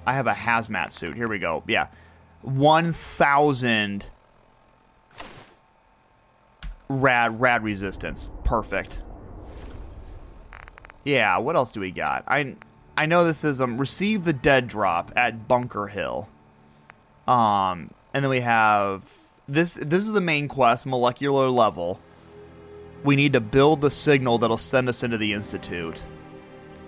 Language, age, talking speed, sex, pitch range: English, 30-49, 130 wpm, male, 100-135 Hz